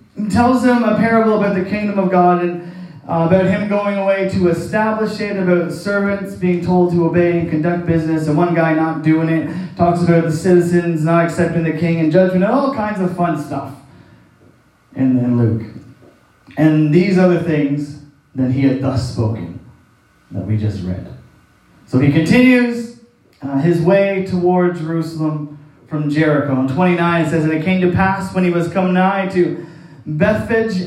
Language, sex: English, male